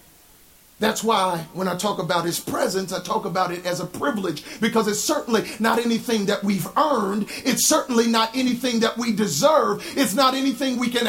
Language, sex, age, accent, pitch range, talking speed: English, male, 40-59, American, 205-285 Hz, 190 wpm